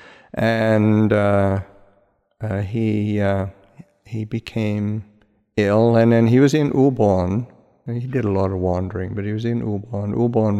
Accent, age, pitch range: American, 60-79, 95-115 Hz